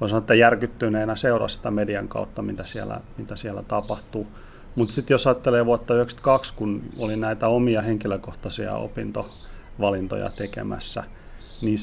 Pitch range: 100-120 Hz